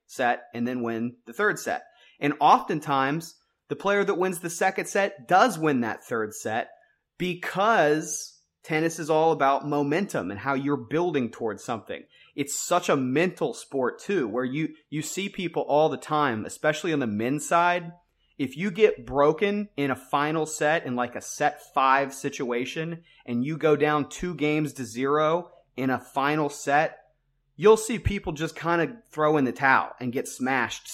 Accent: American